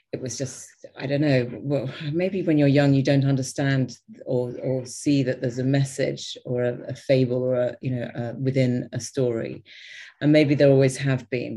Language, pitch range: English, 130-160 Hz